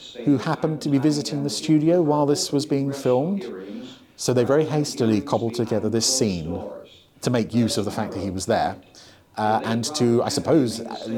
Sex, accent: male, British